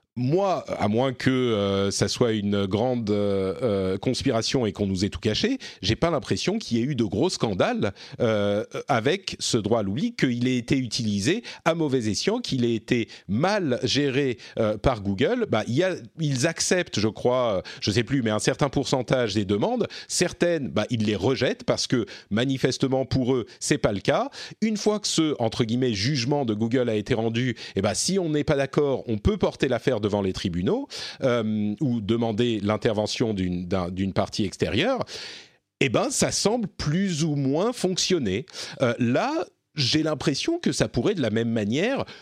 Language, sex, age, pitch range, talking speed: French, male, 40-59, 115-170 Hz, 195 wpm